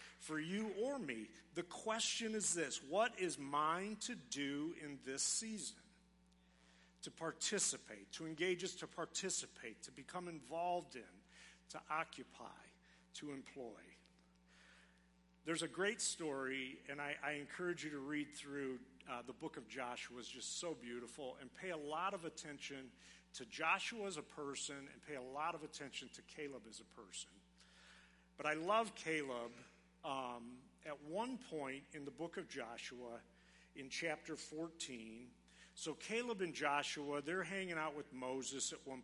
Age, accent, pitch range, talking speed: 50-69, American, 125-160 Hz, 155 wpm